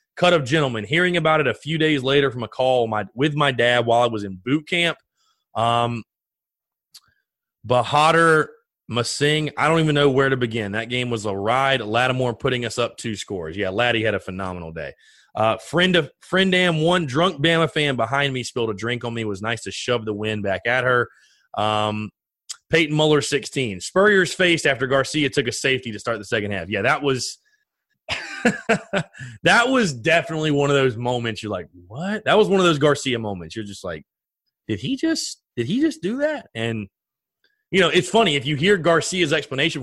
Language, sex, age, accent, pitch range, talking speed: English, male, 30-49, American, 115-165 Hz, 200 wpm